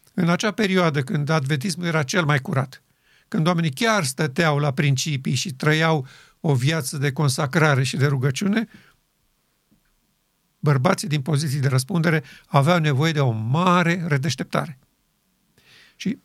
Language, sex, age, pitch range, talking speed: Romanian, male, 50-69, 145-190 Hz, 135 wpm